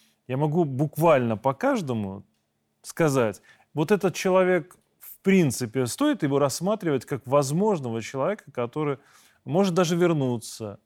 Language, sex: Russian, male